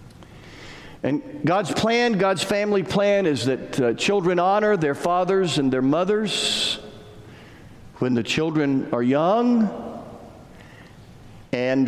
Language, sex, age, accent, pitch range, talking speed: English, male, 50-69, American, 125-195 Hz, 110 wpm